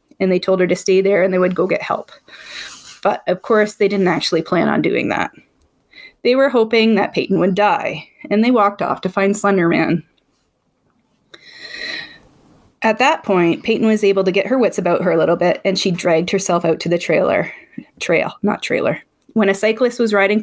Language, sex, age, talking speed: English, female, 20-39, 200 wpm